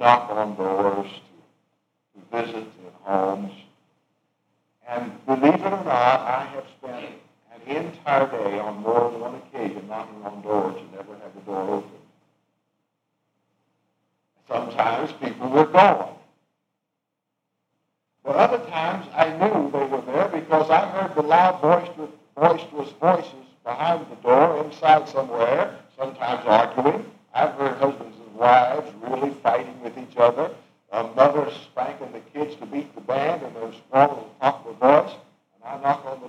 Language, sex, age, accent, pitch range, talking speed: English, male, 60-79, American, 115-150 Hz, 145 wpm